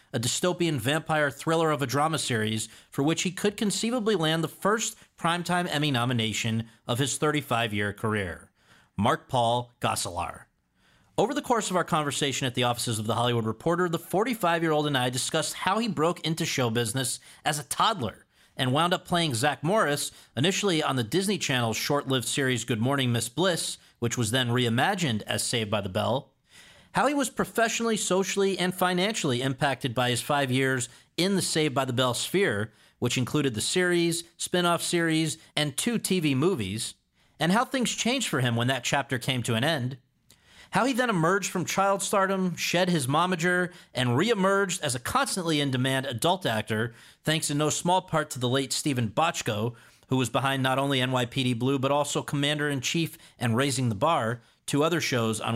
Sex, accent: male, American